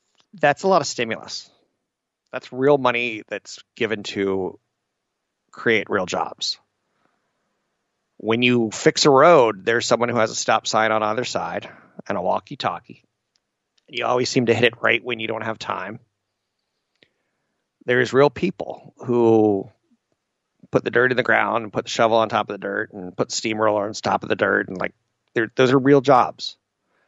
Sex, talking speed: male, 180 wpm